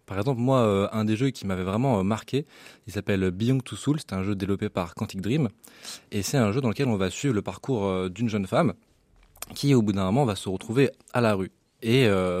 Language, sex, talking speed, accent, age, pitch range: French, male, 235 wpm, French, 20-39, 95-120 Hz